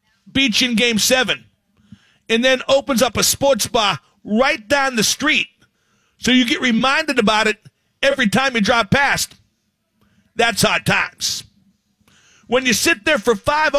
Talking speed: 150 wpm